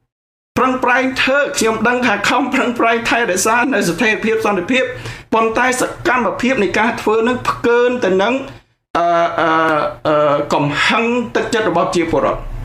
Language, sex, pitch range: English, male, 150-225 Hz